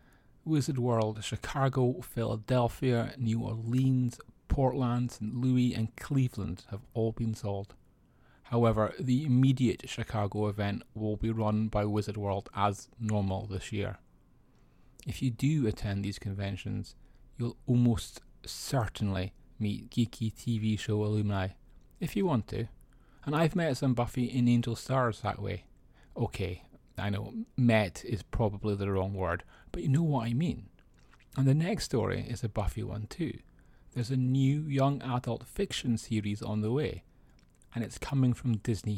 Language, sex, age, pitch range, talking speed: English, male, 30-49, 105-125 Hz, 150 wpm